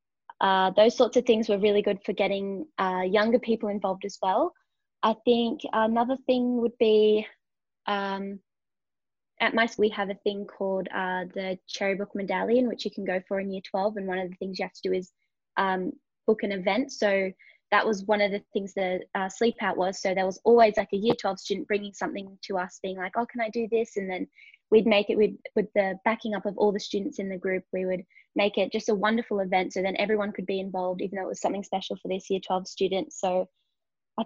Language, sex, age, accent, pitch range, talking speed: English, female, 20-39, Australian, 190-215 Hz, 235 wpm